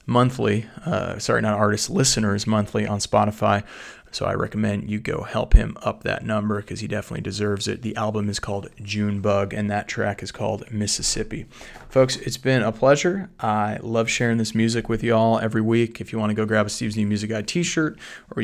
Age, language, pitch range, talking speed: 30-49, English, 105-115 Hz, 210 wpm